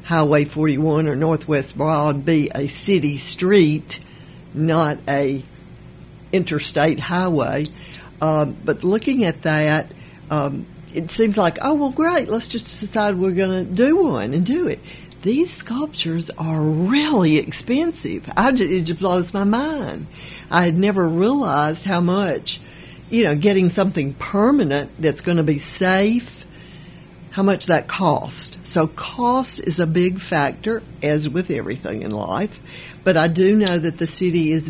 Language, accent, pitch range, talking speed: English, American, 155-195 Hz, 150 wpm